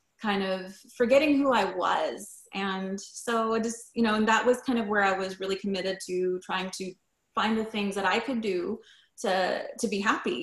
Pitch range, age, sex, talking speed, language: 185-225 Hz, 20-39, female, 205 wpm, English